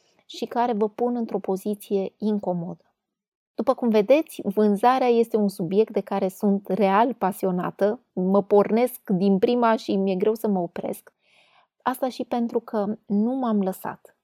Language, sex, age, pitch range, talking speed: Romanian, female, 20-39, 190-235 Hz, 150 wpm